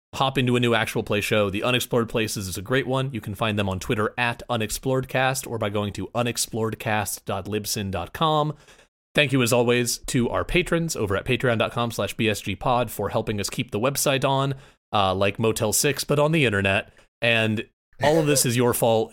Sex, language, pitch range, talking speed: male, English, 100-130 Hz, 190 wpm